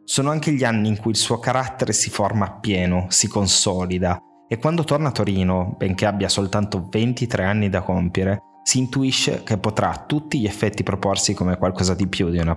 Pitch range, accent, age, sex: 95-120 Hz, native, 20-39, male